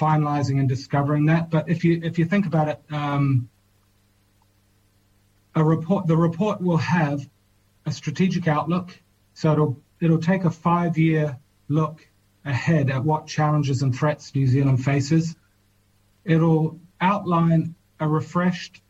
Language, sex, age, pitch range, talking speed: English, male, 30-49, 130-160 Hz, 135 wpm